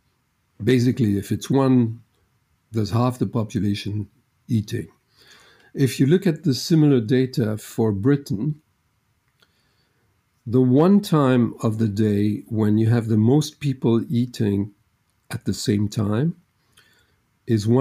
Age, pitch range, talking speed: 50-69, 105-130 Hz, 120 wpm